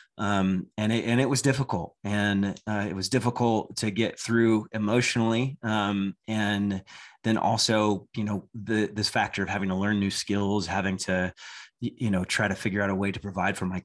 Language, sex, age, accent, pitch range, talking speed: English, male, 30-49, American, 95-115 Hz, 195 wpm